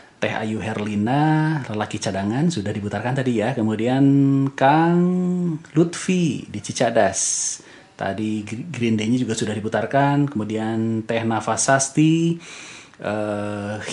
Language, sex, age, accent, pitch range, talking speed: Indonesian, male, 30-49, native, 110-145 Hz, 110 wpm